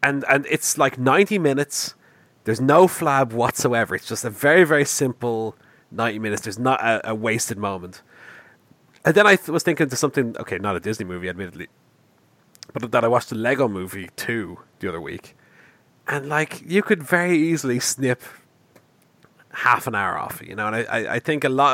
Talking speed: 190 wpm